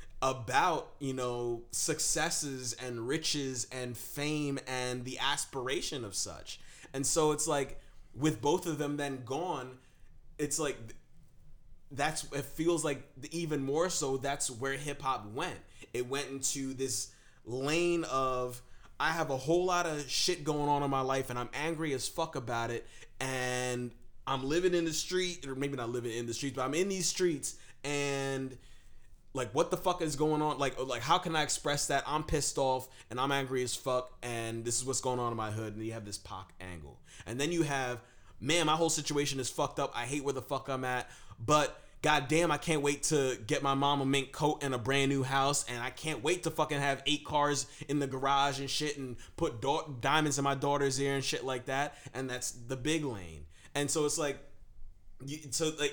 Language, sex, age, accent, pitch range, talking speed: English, male, 20-39, American, 125-150 Hz, 205 wpm